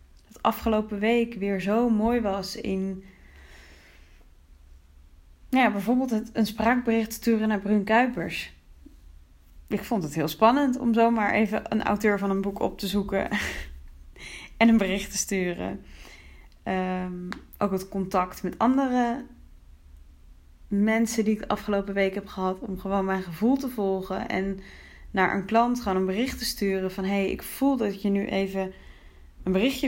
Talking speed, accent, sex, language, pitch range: 150 wpm, Dutch, female, Dutch, 175-215 Hz